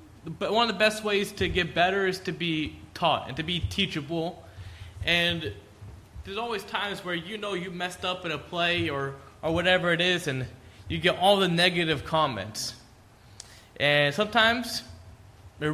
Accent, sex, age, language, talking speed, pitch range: American, male, 20-39, English, 170 wpm, 145-205 Hz